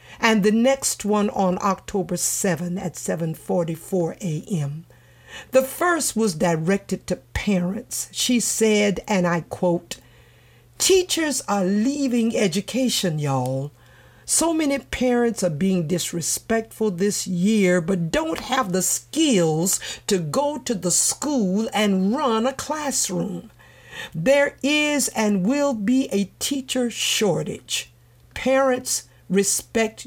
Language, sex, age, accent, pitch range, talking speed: English, female, 50-69, American, 175-250 Hz, 115 wpm